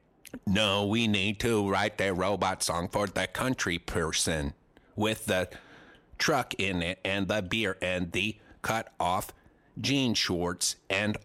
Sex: male